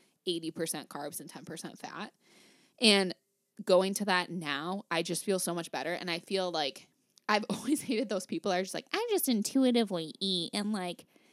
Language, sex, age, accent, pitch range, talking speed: English, female, 10-29, American, 160-205 Hz, 185 wpm